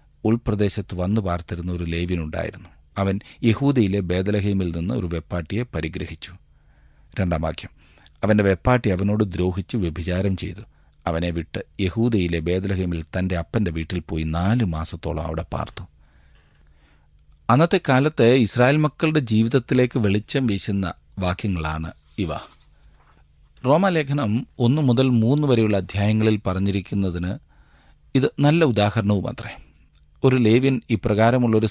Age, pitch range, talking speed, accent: 40-59, 85-110 Hz, 105 wpm, native